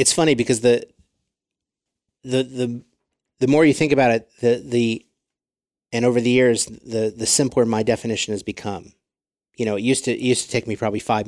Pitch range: 105-125 Hz